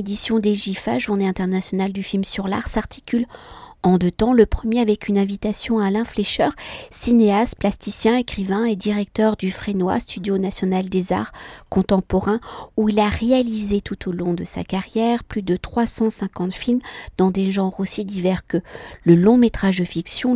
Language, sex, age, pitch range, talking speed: French, female, 50-69, 185-220 Hz, 170 wpm